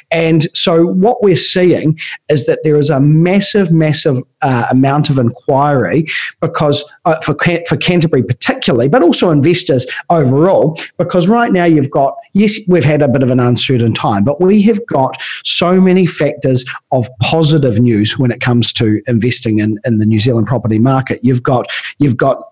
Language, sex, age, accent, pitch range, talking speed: English, male, 40-59, Australian, 130-170 Hz, 180 wpm